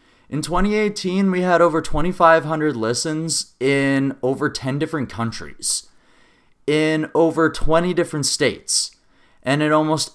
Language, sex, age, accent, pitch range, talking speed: English, male, 20-39, American, 130-170 Hz, 120 wpm